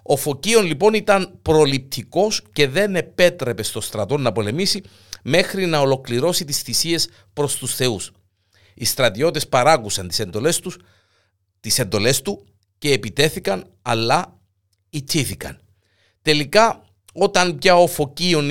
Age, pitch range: 50-69, 105-160 Hz